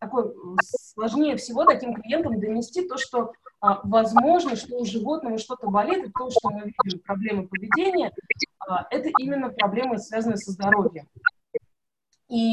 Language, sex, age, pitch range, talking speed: Russian, female, 20-39, 205-255 Hz, 145 wpm